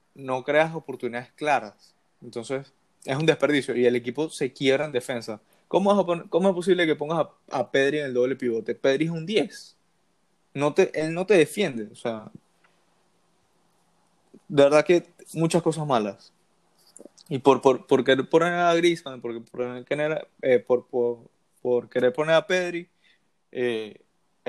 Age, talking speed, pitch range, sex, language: 20-39, 155 wpm, 125-160 Hz, male, Spanish